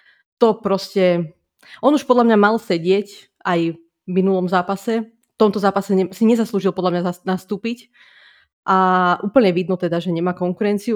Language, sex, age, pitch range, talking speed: Slovak, female, 20-39, 180-205 Hz, 150 wpm